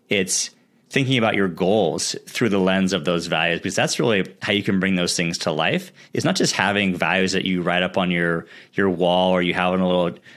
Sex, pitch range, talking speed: male, 90-105 Hz, 235 wpm